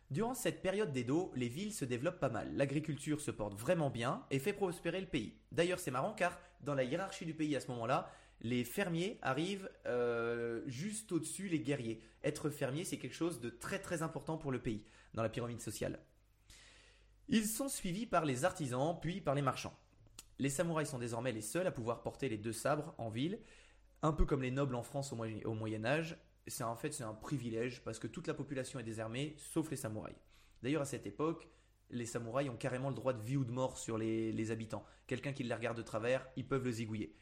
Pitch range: 115-155 Hz